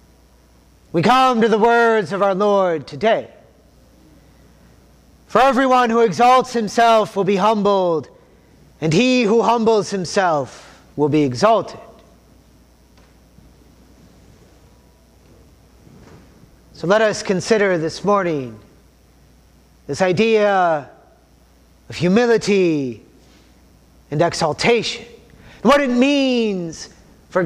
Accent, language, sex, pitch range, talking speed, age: American, English, male, 165-240 Hz, 90 wpm, 30-49